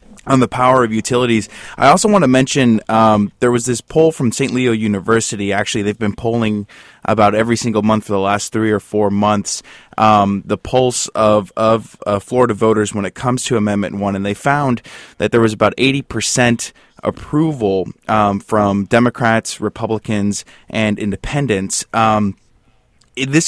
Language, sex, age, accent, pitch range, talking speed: English, male, 20-39, American, 105-125 Hz, 165 wpm